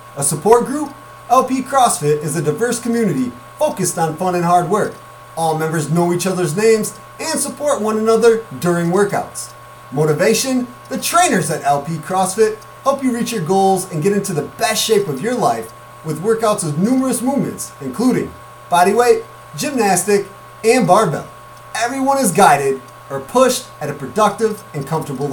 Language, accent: English, American